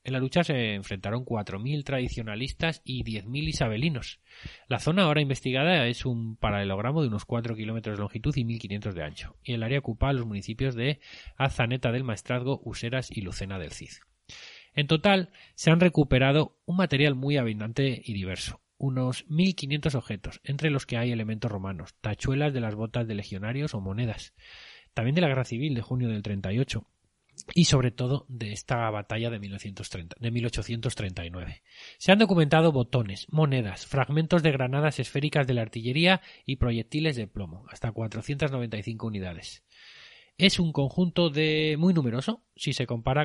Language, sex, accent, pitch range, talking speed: Spanish, male, Spanish, 110-145 Hz, 160 wpm